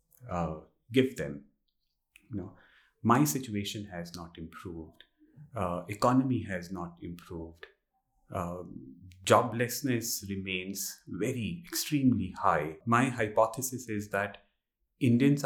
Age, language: 30-49, English